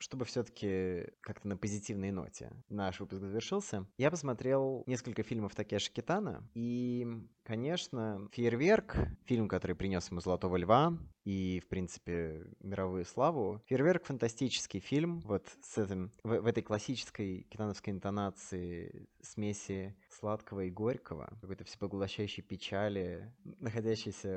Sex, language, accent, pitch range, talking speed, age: male, Russian, native, 95-120 Hz, 120 wpm, 20-39